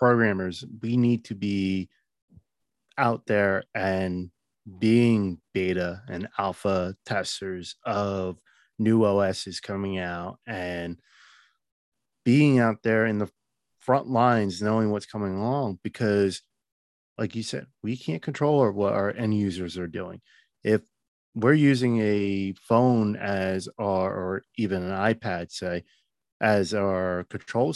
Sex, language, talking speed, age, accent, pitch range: male, English, 130 wpm, 30-49, American, 95-115 Hz